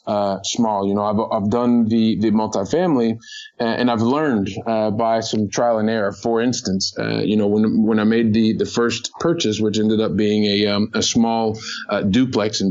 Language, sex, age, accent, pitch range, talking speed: English, male, 20-39, American, 105-120 Hz, 210 wpm